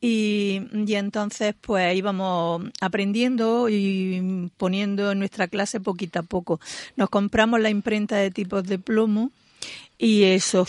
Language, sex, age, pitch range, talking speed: Spanish, female, 50-69, 185-230 Hz, 135 wpm